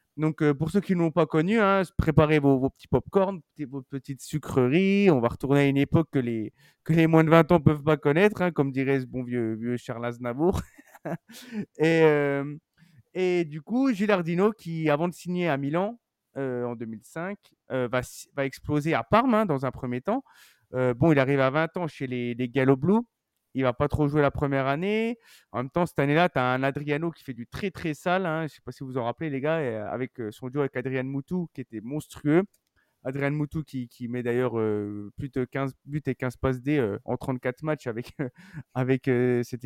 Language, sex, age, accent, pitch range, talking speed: French, male, 30-49, French, 130-170 Hz, 235 wpm